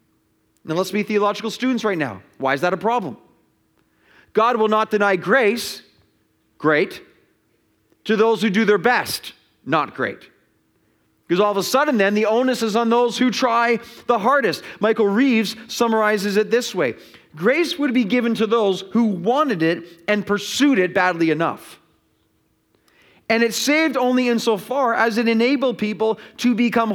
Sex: male